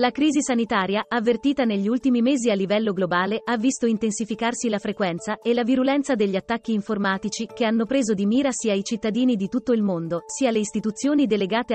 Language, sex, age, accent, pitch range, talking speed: Italian, female, 30-49, native, 200-245 Hz, 190 wpm